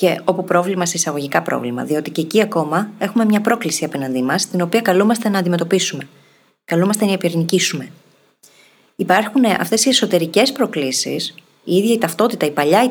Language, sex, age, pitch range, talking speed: Greek, female, 20-39, 160-210 Hz, 165 wpm